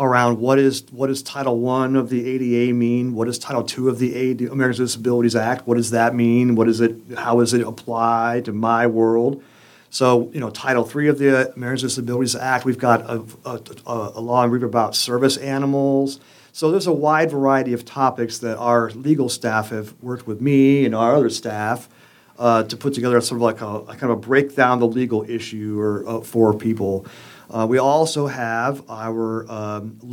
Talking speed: 205 wpm